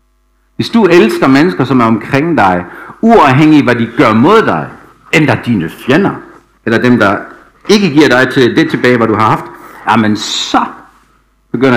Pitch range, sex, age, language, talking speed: 110-155 Hz, male, 60-79, Danish, 180 wpm